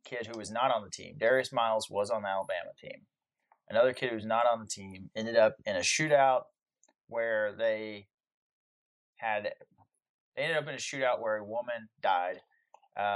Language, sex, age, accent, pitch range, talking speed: English, male, 20-39, American, 110-140 Hz, 185 wpm